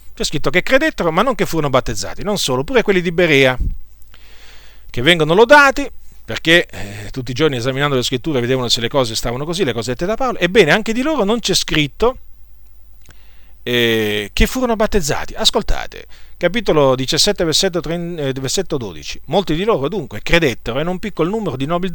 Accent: native